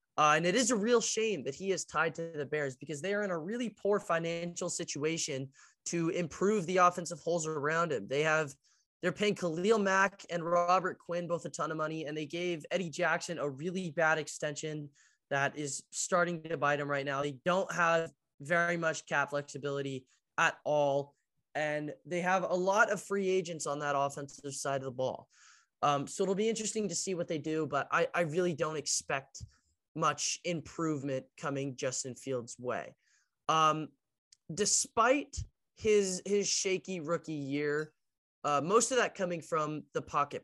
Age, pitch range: 20-39, 145-180 Hz